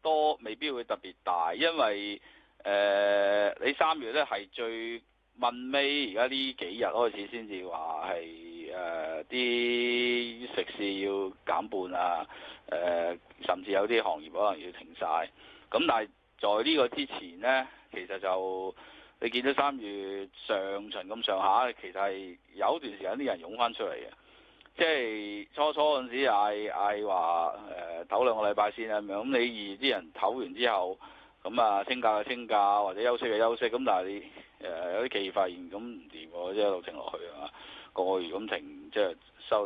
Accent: native